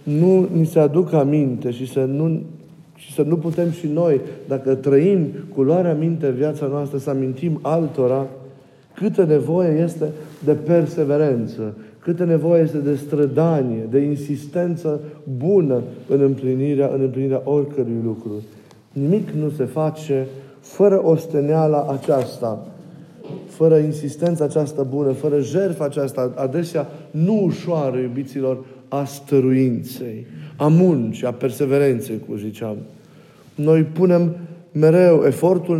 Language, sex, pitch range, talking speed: Romanian, male, 135-160 Hz, 120 wpm